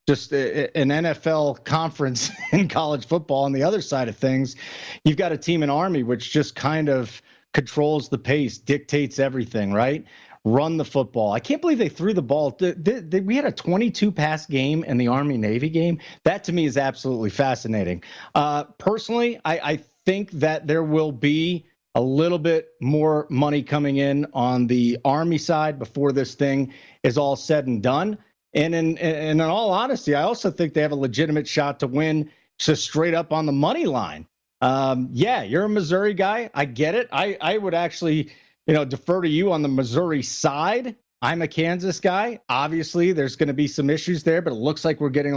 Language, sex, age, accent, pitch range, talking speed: English, male, 40-59, American, 135-170 Hz, 195 wpm